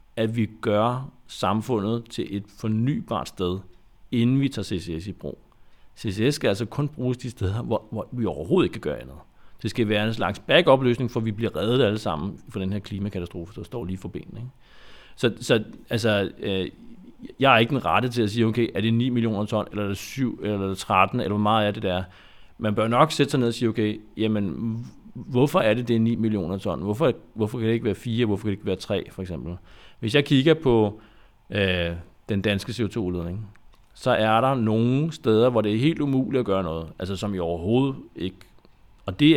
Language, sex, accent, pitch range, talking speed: Danish, male, native, 95-115 Hz, 220 wpm